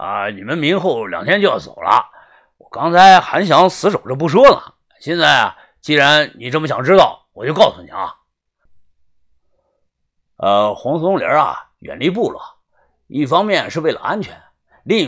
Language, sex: Chinese, male